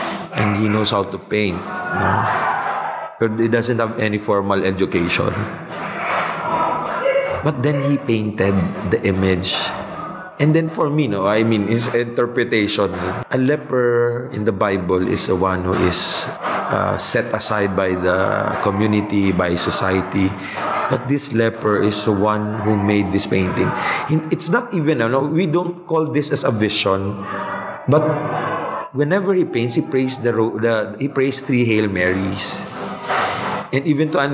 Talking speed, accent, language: 150 wpm, Filipino, English